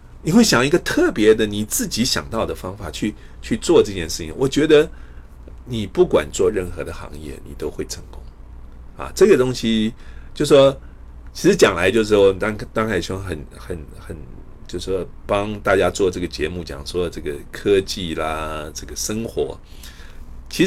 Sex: male